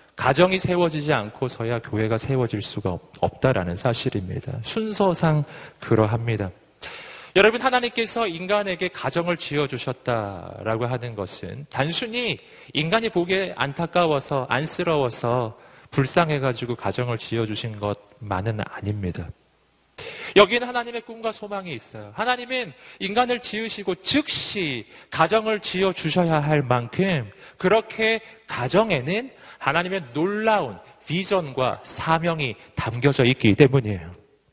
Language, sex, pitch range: Korean, male, 120-185 Hz